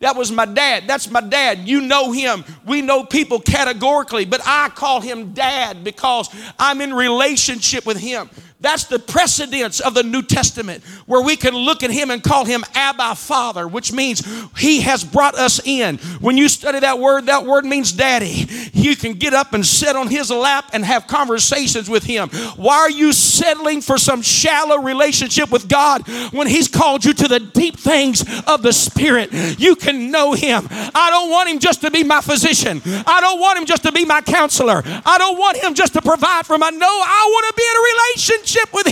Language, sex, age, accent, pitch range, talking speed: English, male, 50-69, American, 245-345 Hz, 210 wpm